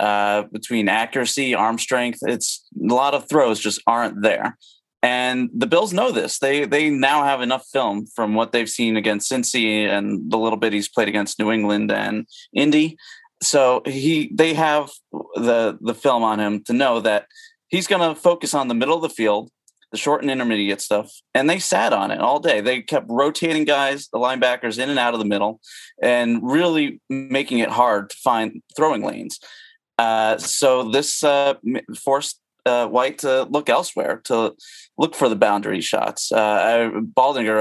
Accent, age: American, 30-49